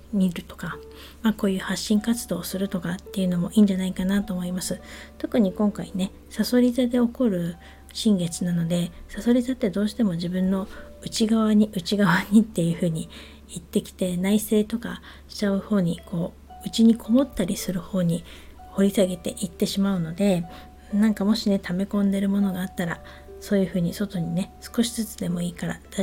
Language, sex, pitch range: Japanese, female, 180-215 Hz